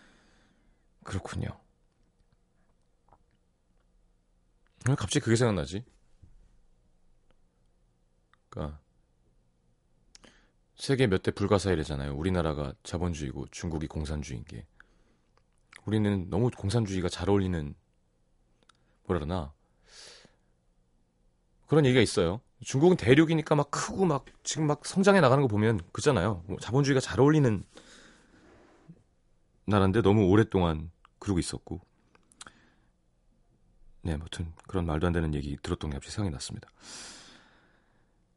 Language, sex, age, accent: Korean, male, 40-59, native